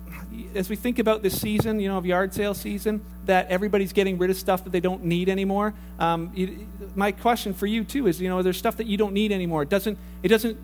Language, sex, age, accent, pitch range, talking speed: English, male, 40-59, American, 180-215 Hz, 250 wpm